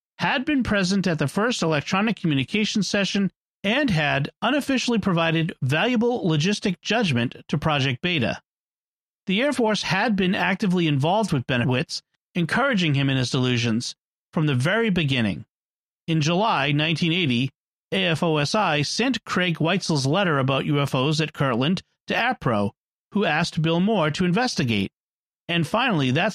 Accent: American